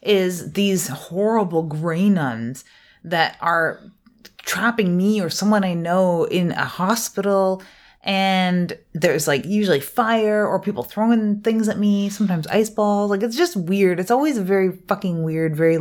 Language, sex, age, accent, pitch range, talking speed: English, female, 30-49, American, 155-200 Hz, 150 wpm